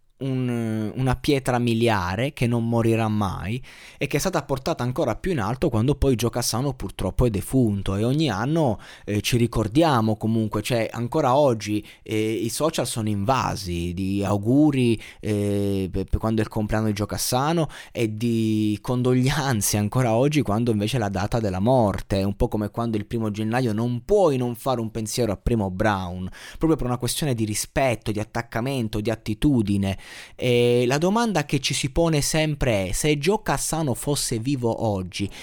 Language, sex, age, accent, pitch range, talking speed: Italian, male, 20-39, native, 110-145 Hz, 175 wpm